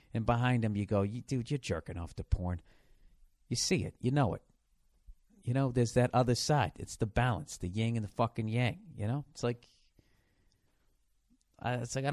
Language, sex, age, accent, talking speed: English, male, 50-69, American, 205 wpm